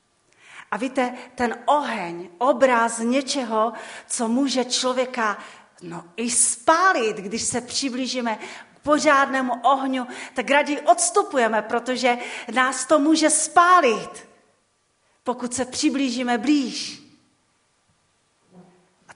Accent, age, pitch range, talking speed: native, 40-59, 215-290 Hz, 95 wpm